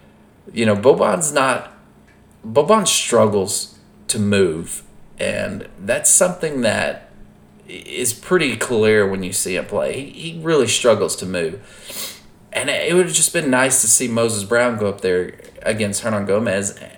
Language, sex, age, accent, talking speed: English, male, 30-49, American, 150 wpm